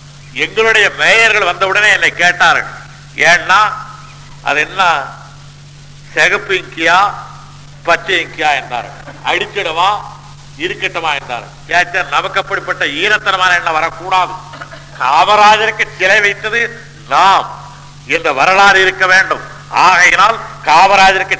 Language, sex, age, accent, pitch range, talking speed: Tamil, male, 50-69, native, 150-215 Hz, 65 wpm